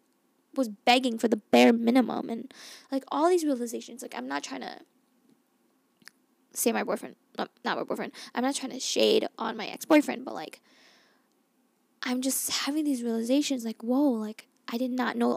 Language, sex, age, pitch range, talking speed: English, female, 10-29, 240-275 Hz, 170 wpm